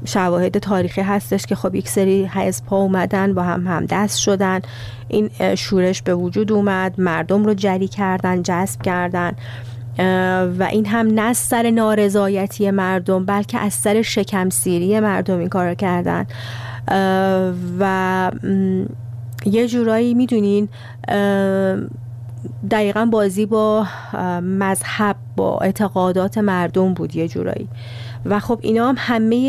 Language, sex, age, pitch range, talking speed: Persian, female, 30-49, 180-215 Hz, 120 wpm